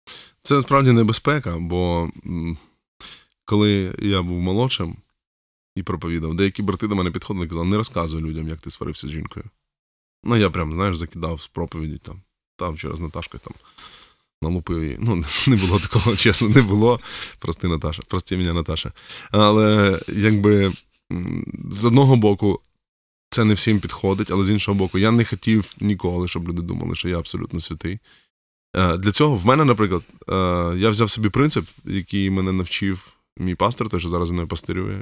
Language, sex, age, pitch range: Ukrainian, male, 20-39, 85-105 Hz